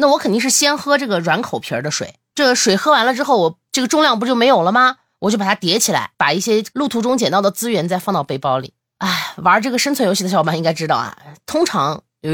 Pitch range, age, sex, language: 165-250 Hz, 20-39, female, Chinese